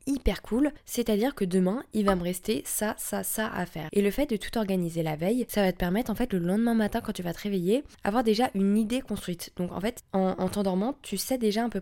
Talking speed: 265 wpm